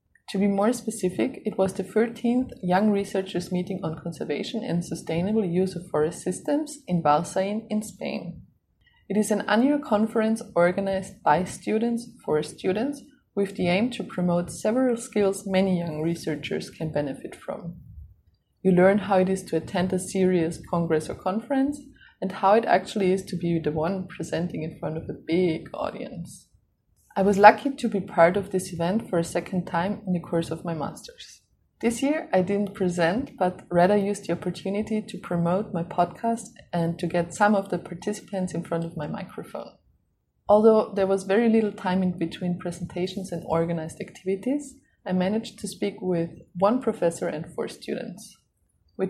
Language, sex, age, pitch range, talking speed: English, female, 20-39, 175-215 Hz, 175 wpm